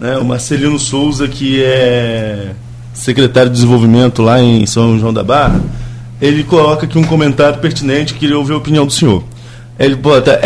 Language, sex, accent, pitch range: Portuguese, male, Brazilian, 125-170 Hz